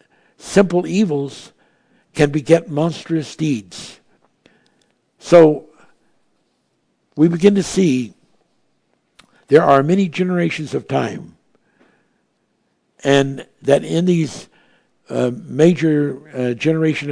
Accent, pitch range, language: American, 140-170 Hz, English